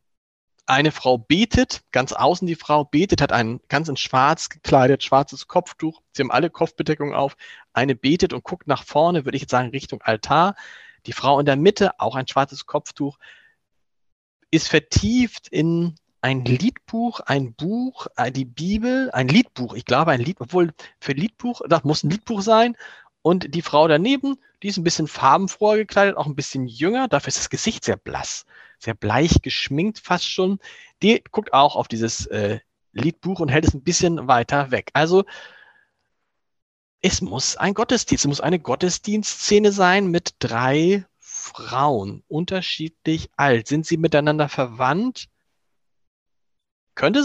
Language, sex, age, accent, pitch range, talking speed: German, male, 40-59, German, 140-200 Hz, 155 wpm